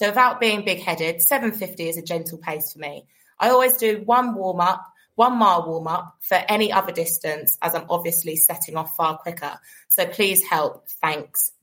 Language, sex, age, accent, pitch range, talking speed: English, female, 20-39, British, 160-190 Hz, 190 wpm